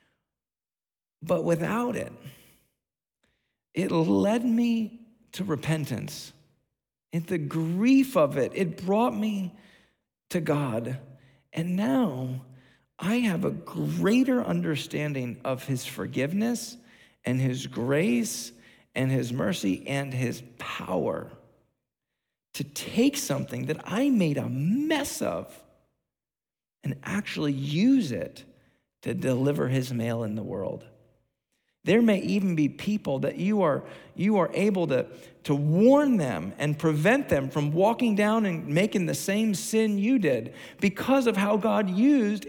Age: 40-59